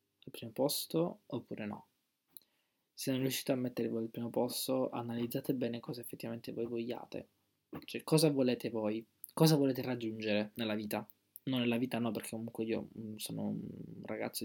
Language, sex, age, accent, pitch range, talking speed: Italian, male, 20-39, native, 110-130 Hz, 160 wpm